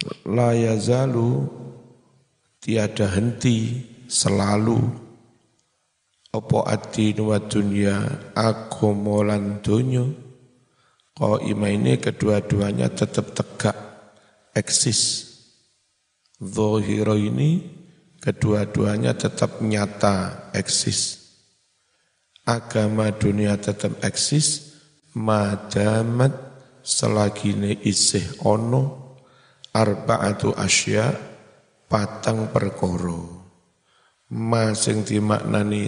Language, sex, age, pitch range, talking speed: Indonesian, male, 50-69, 105-120 Hz, 65 wpm